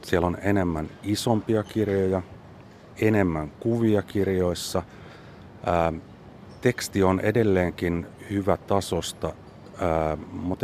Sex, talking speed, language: male, 90 wpm, Finnish